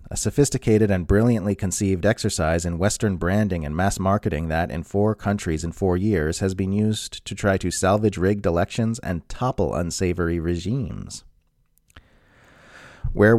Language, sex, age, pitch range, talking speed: English, male, 30-49, 85-115 Hz, 150 wpm